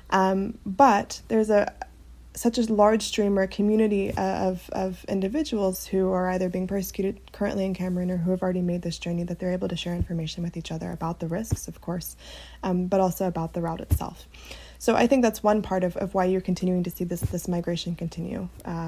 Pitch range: 170-190 Hz